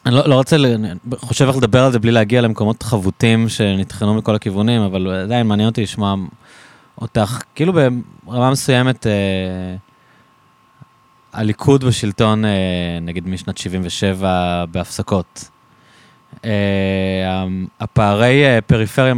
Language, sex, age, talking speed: Hebrew, male, 20-39, 115 wpm